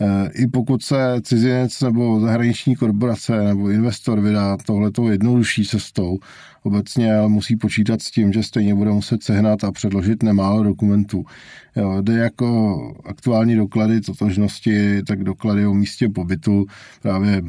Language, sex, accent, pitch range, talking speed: Czech, male, native, 95-105 Hz, 130 wpm